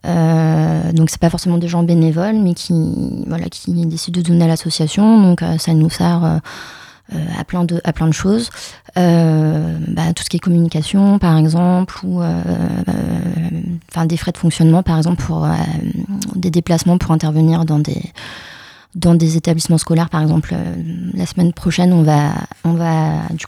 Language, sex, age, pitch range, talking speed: French, female, 20-39, 160-175 Hz, 185 wpm